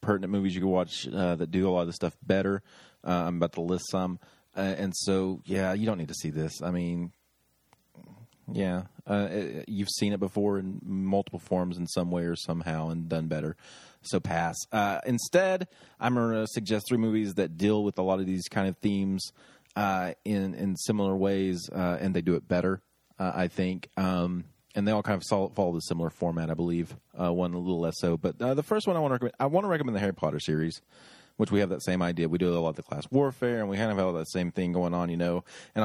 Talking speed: 245 wpm